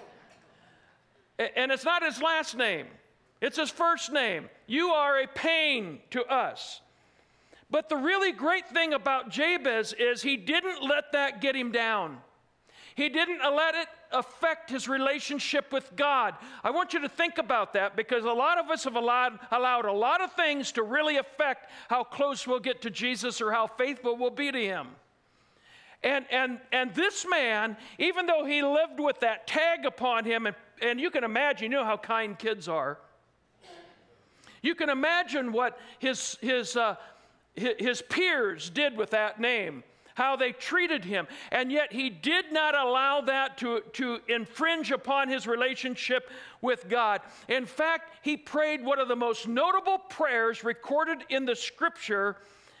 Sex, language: male, English